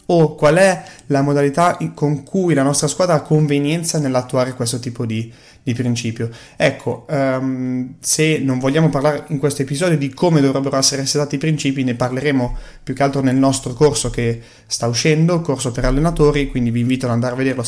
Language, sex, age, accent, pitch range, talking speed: Italian, male, 20-39, native, 130-155 Hz, 190 wpm